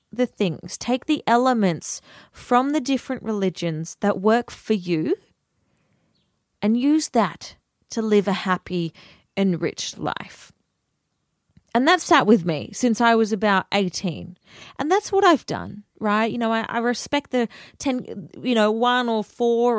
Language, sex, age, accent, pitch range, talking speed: English, female, 30-49, Australian, 190-245 Hz, 150 wpm